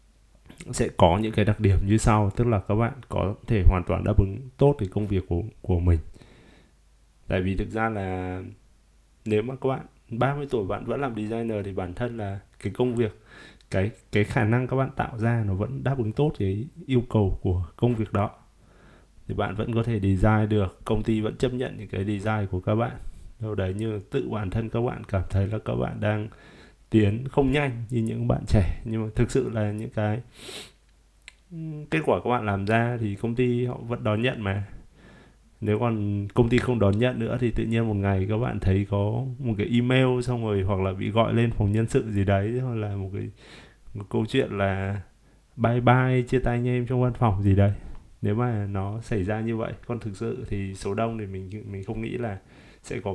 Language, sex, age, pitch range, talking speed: Vietnamese, male, 20-39, 100-120 Hz, 225 wpm